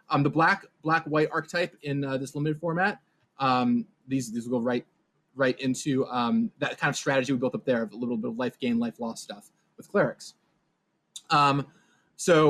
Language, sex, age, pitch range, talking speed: English, male, 20-39, 130-170 Hz, 200 wpm